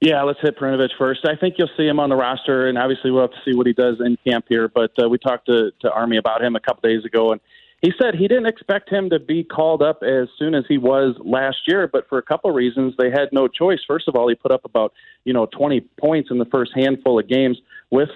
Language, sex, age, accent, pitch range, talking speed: English, male, 40-59, American, 115-140 Hz, 275 wpm